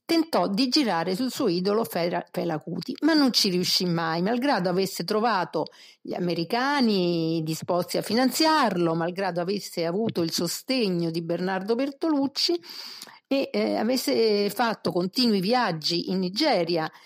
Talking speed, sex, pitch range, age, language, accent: 130 wpm, female, 175-250 Hz, 50-69, Italian, native